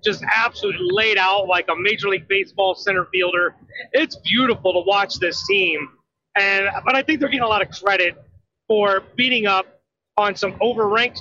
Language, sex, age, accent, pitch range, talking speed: English, male, 30-49, American, 180-225 Hz, 175 wpm